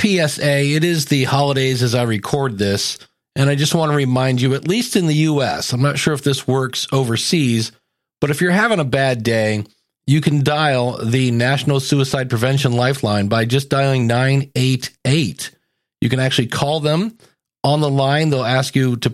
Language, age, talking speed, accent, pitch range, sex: English, 40-59, 185 wpm, American, 125-160 Hz, male